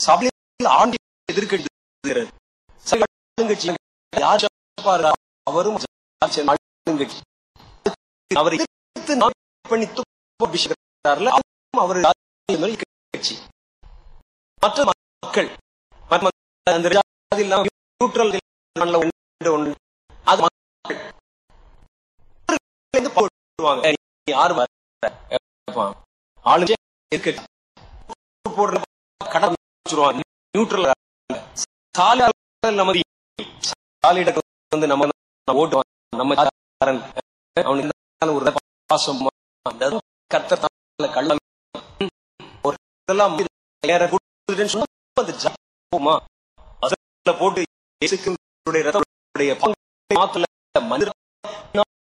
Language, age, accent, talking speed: Tamil, 30-49, native, 80 wpm